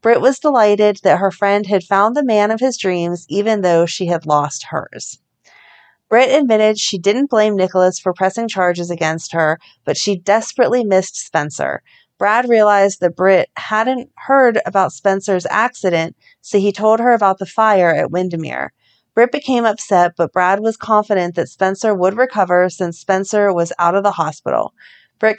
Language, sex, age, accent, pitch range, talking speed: English, female, 40-59, American, 180-220 Hz, 170 wpm